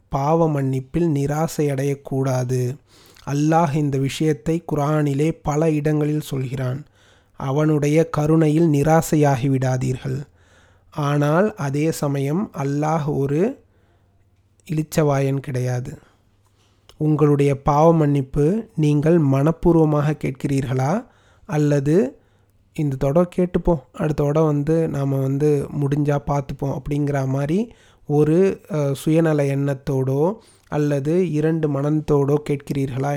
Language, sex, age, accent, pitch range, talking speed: Tamil, male, 30-49, native, 135-155 Hz, 85 wpm